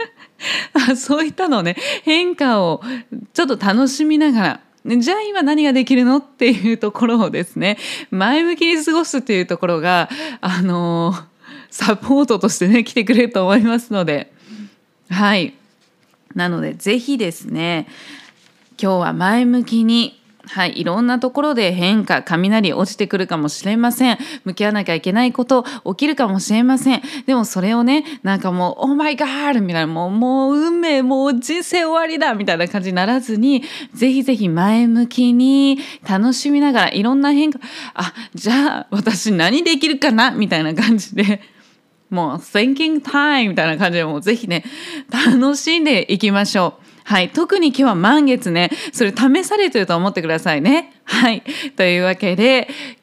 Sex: female